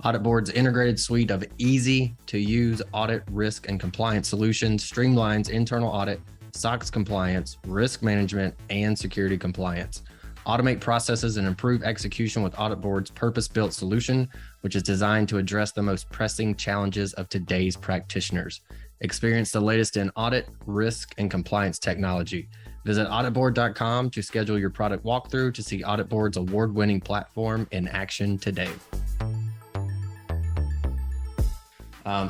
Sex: male